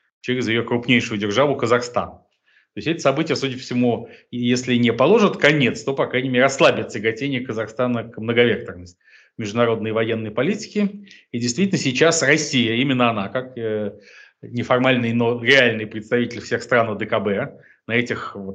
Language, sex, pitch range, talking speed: Russian, male, 110-135 Hz, 140 wpm